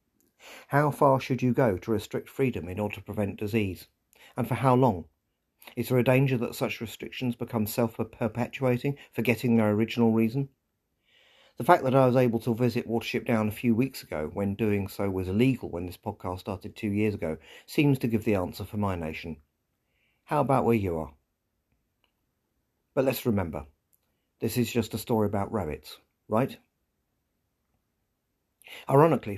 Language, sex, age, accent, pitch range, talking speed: English, male, 40-59, British, 100-120 Hz, 170 wpm